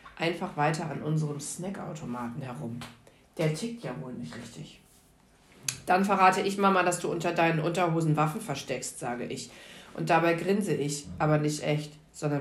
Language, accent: German, German